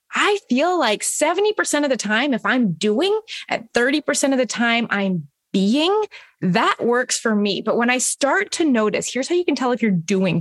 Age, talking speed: 20-39, 200 wpm